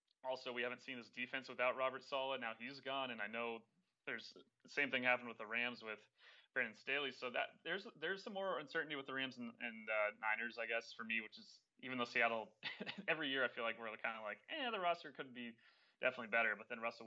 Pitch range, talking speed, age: 105-125 Hz, 240 wpm, 20-39